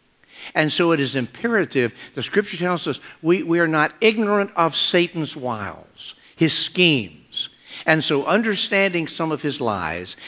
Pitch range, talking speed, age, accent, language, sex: 115-155 Hz, 150 wpm, 60-79, American, English, male